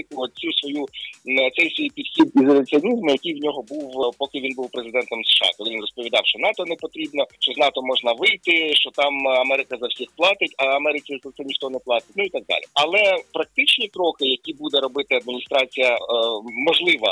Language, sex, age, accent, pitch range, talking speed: Ukrainian, male, 30-49, native, 135-185 Hz, 180 wpm